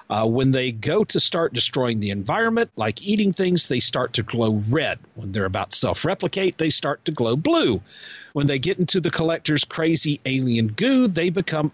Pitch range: 120-175 Hz